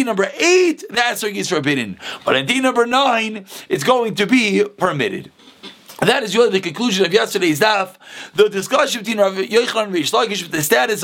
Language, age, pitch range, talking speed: English, 30-49, 205-265 Hz, 185 wpm